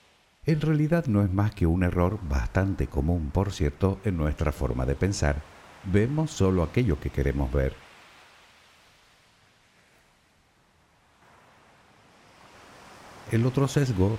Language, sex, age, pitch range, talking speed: Spanish, male, 50-69, 75-115 Hz, 110 wpm